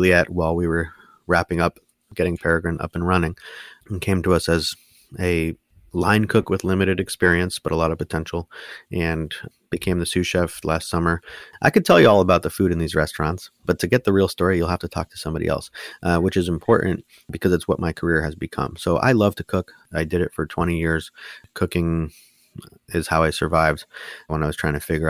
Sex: male